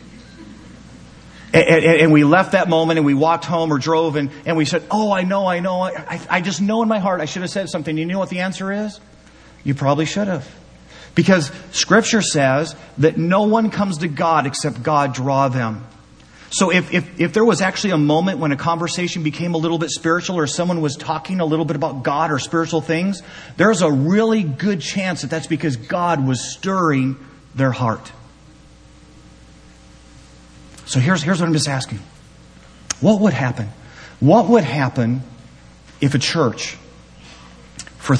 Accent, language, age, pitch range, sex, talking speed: American, English, 40-59, 120-170 Hz, male, 175 wpm